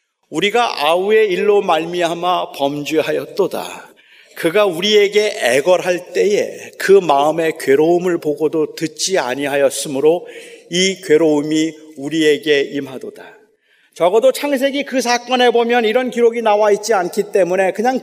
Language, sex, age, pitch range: Korean, male, 40-59, 230-345 Hz